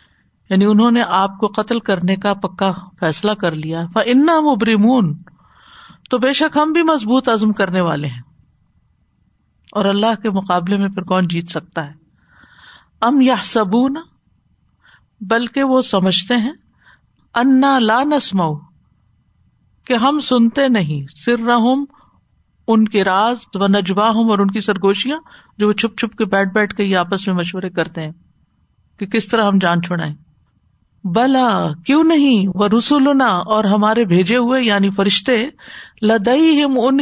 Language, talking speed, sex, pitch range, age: Urdu, 145 wpm, female, 190-250 Hz, 50-69